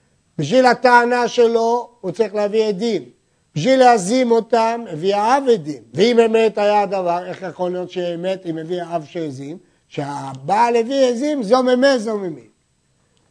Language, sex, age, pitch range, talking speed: Hebrew, male, 50-69, 165-230 Hz, 130 wpm